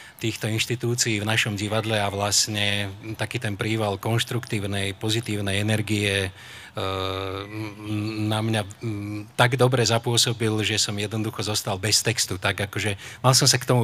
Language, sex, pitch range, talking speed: Slovak, male, 105-120 Hz, 135 wpm